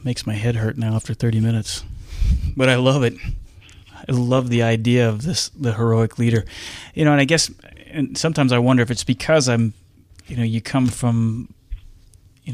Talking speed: 190 wpm